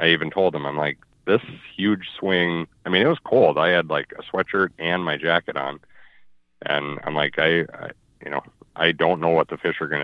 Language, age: English, 40-59